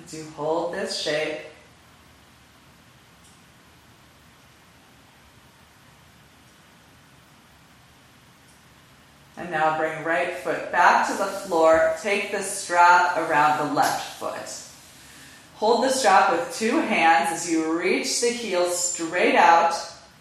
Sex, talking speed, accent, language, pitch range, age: female, 100 wpm, American, English, 160-185 Hz, 30-49